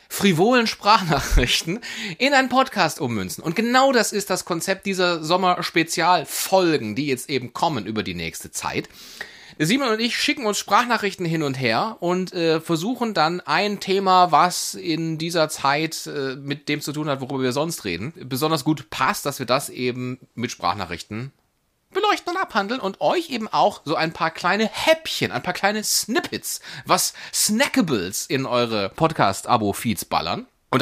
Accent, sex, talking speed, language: German, male, 160 wpm, German